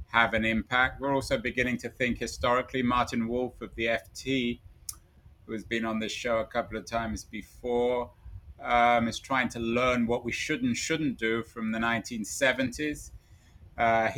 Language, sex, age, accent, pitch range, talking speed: English, male, 30-49, British, 105-120 Hz, 170 wpm